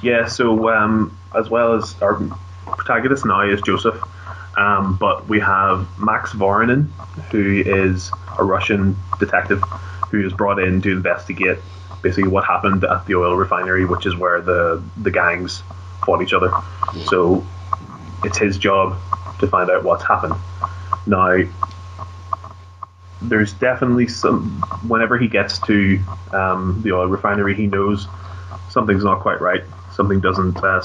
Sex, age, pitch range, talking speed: male, 20-39, 90-100 Hz, 145 wpm